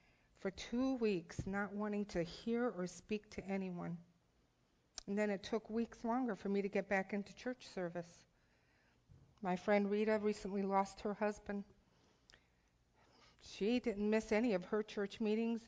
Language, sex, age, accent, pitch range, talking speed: English, female, 50-69, American, 195-235 Hz, 155 wpm